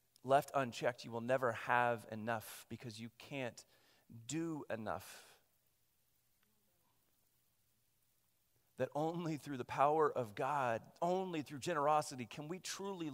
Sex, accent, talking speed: male, American, 115 wpm